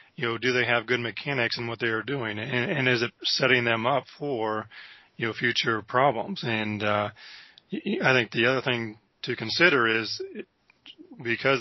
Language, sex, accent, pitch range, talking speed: English, male, American, 115-125 Hz, 180 wpm